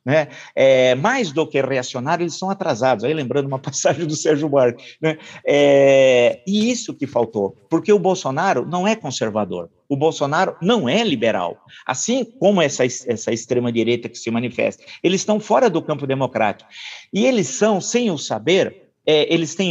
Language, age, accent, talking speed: Portuguese, 50-69, Brazilian, 170 wpm